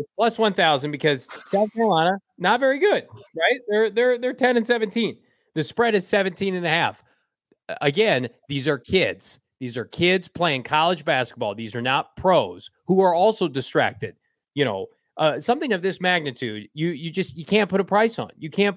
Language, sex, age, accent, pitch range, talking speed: English, male, 30-49, American, 135-195 Hz, 185 wpm